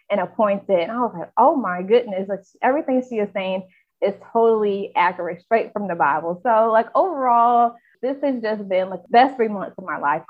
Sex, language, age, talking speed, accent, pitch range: female, English, 20-39, 205 wpm, American, 180-230 Hz